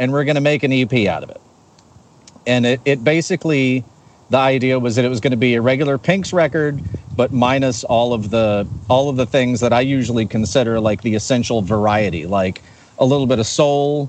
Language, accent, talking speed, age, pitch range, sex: English, American, 215 wpm, 40-59, 115-140 Hz, male